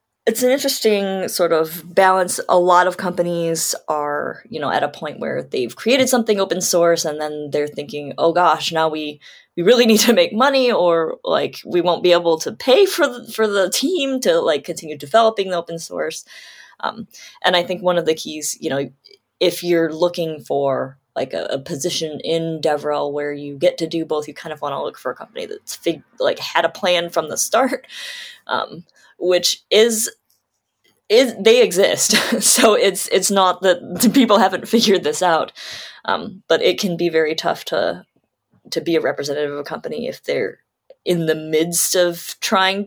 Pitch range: 160-220 Hz